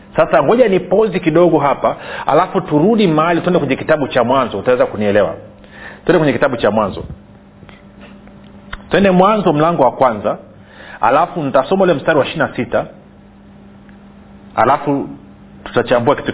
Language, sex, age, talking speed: Swahili, male, 40-59, 130 wpm